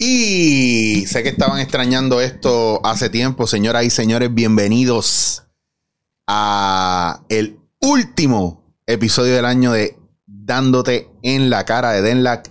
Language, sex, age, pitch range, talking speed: Spanish, male, 30-49, 105-135 Hz, 120 wpm